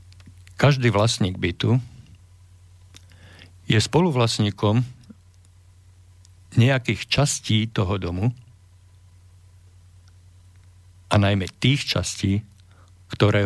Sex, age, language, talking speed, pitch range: male, 50-69, Slovak, 60 wpm, 90-115 Hz